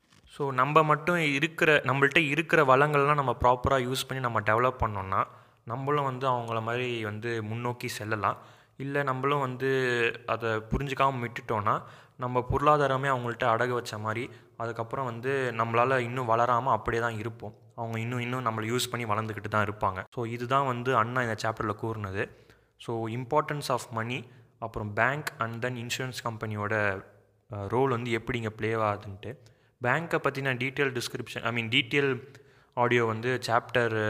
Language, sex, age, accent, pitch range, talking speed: Tamil, male, 20-39, native, 110-130 Hz, 145 wpm